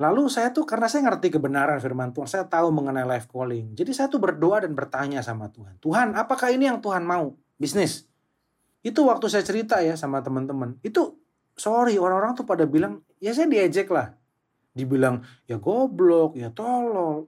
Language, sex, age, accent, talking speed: Indonesian, male, 30-49, native, 175 wpm